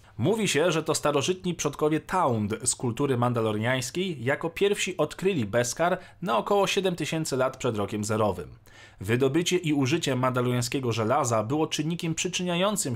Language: Polish